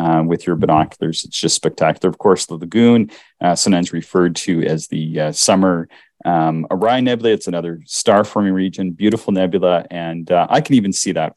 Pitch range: 85-105 Hz